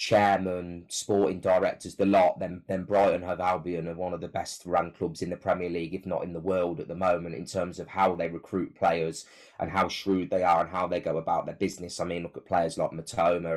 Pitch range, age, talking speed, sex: 90-105 Hz, 20-39, 245 wpm, male